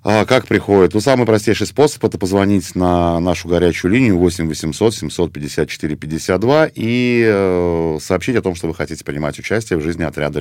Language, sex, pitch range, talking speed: Russian, male, 80-105 Hz, 175 wpm